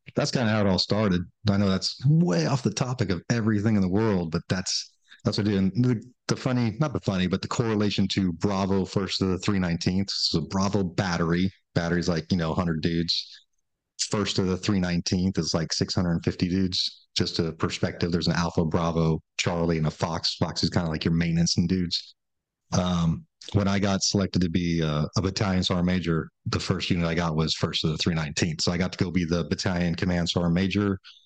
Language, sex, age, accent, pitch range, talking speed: English, male, 30-49, American, 80-100 Hz, 225 wpm